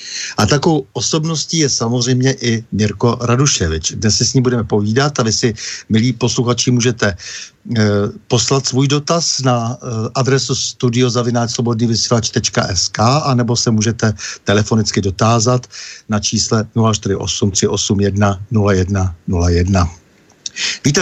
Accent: native